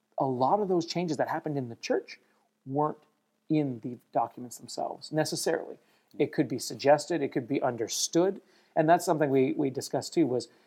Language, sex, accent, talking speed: English, male, American, 180 wpm